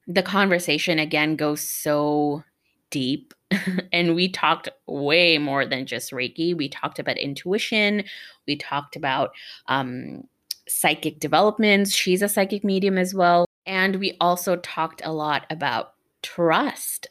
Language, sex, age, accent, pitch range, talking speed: English, female, 20-39, American, 155-205 Hz, 135 wpm